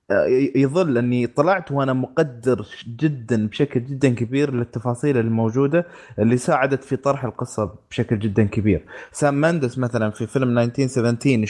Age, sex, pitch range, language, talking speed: 20-39, male, 120-155 Hz, Arabic, 130 wpm